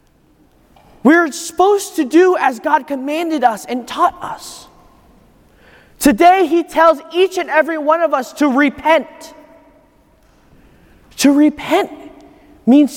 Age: 30-49